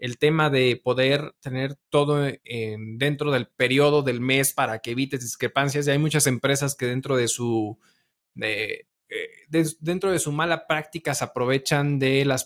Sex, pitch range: male, 130-160 Hz